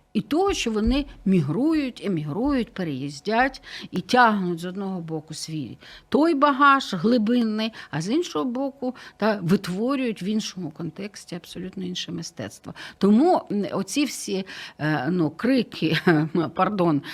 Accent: native